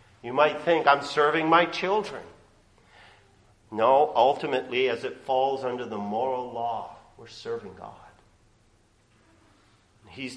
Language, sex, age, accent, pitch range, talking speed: English, male, 50-69, American, 110-150 Hz, 115 wpm